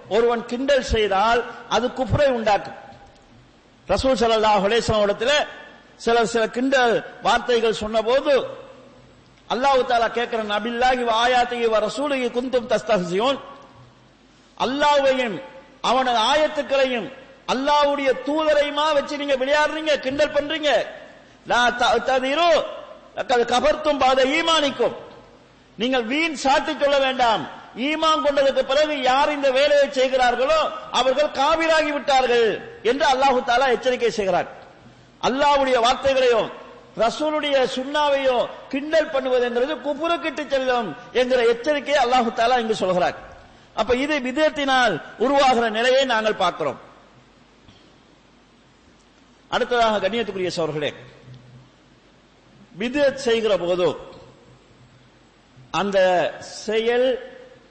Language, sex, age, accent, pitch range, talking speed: English, male, 50-69, Indian, 235-290 Hz, 70 wpm